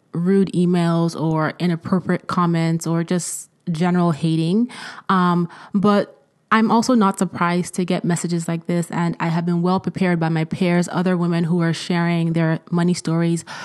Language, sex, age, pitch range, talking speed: English, female, 20-39, 170-195 Hz, 165 wpm